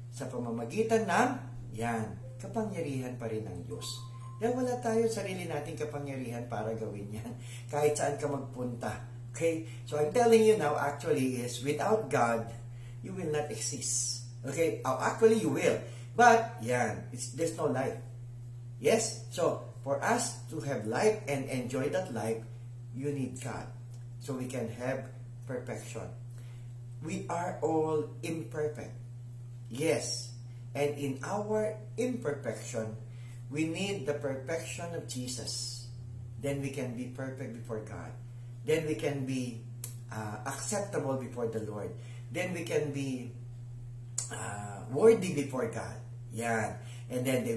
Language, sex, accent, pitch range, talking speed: English, male, Filipino, 120-140 Hz, 140 wpm